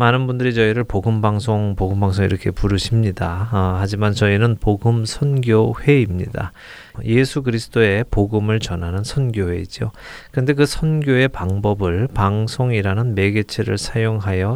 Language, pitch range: Korean, 100-125 Hz